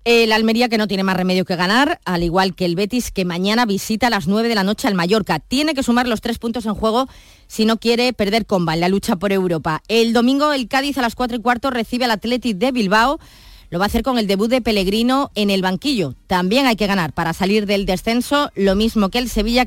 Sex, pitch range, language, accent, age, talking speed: female, 185-235 Hz, Spanish, Spanish, 20-39, 250 wpm